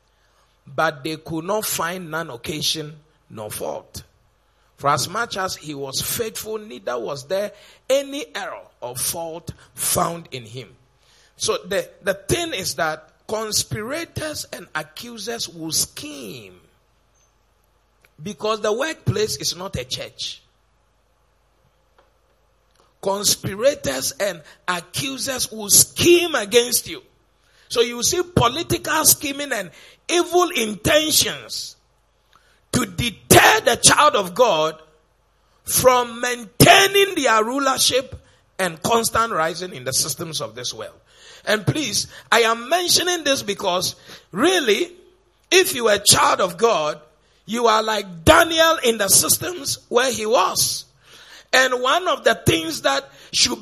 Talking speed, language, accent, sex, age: 125 wpm, English, Nigerian, male, 50-69